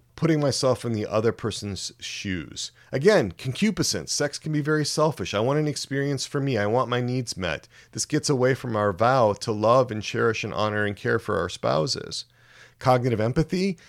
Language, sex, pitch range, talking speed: English, male, 100-140 Hz, 190 wpm